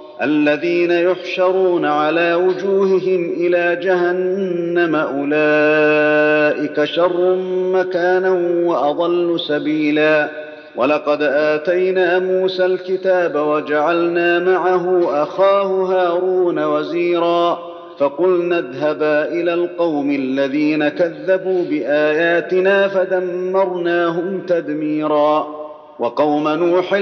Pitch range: 150-180 Hz